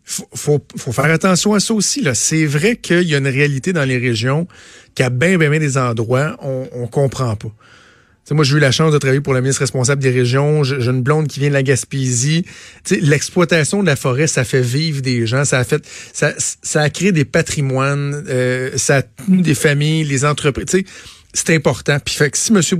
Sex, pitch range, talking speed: male, 130-160 Hz, 225 wpm